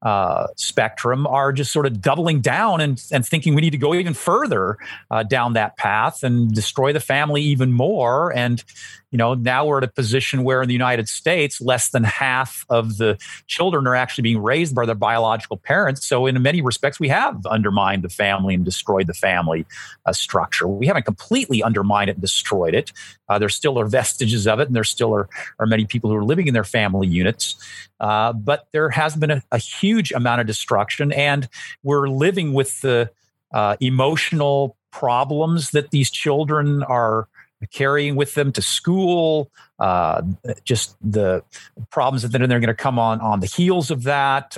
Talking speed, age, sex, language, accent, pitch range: 190 wpm, 40-59, male, English, American, 115-145 Hz